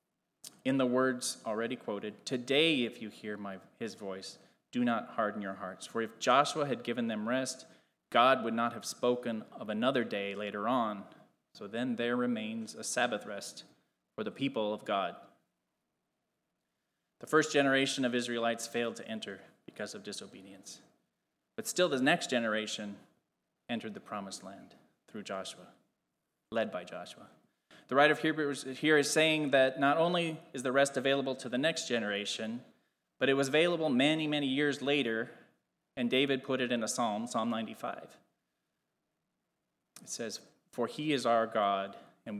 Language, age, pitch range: English, 20-39, 110-135 Hz